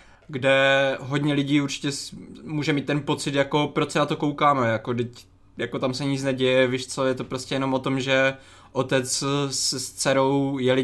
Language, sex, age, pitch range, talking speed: Czech, male, 20-39, 130-150 Hz, 195 wpm